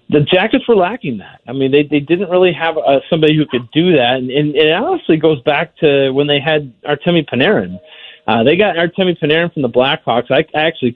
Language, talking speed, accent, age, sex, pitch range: English, 225 wpm, American, 40-59, male, 125-165 Hz